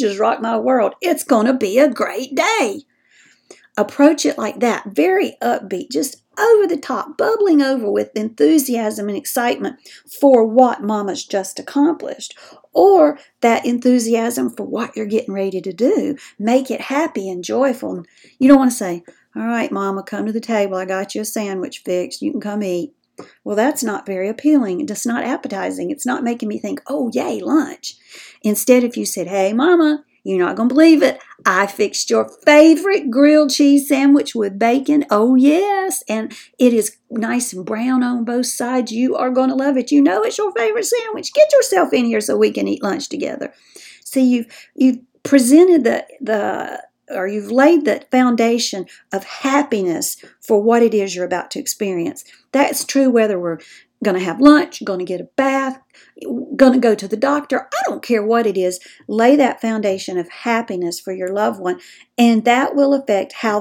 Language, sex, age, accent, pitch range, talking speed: English, female, 50-69, American, 210-280 Hz, 185 wpm